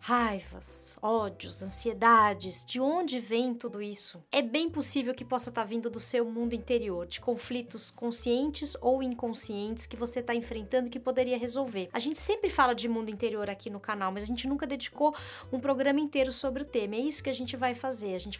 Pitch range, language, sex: 205-265 Hz, Portuguese, female